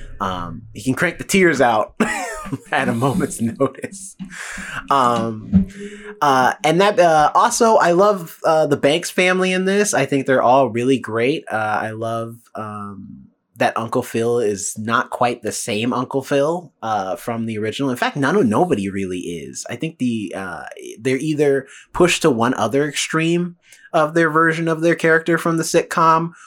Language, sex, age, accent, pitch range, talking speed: English, male, 20-39, American, 120-170 Hz, 170 wpm